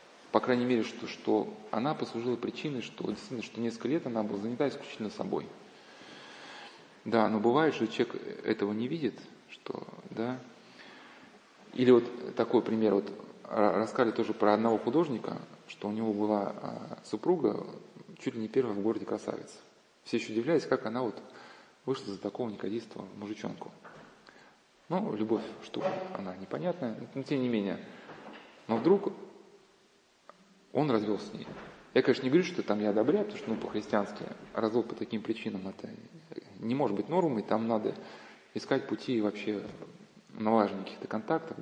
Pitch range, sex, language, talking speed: 105-125 Hz, male, Russian, 155 wpm